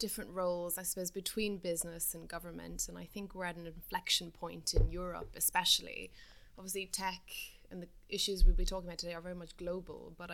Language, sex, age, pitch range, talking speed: English, female, 20-39, 170-215 Hz, 195 wpm